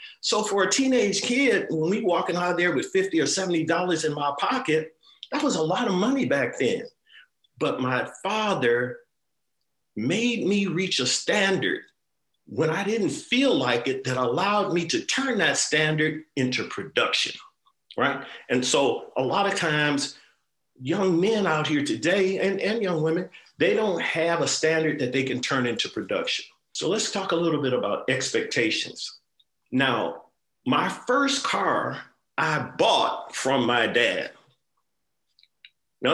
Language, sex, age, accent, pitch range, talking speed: English, male, 50-69, American, 155-250 Hz, 155 wpm